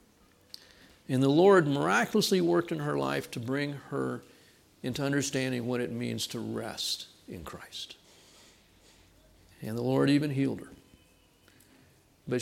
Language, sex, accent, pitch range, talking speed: English, male, American, 115-165 Hz, 130 wpm